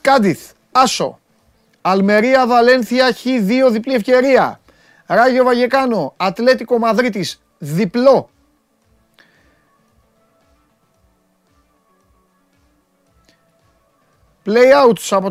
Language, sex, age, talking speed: Greek, male, 30-49, 55 wpm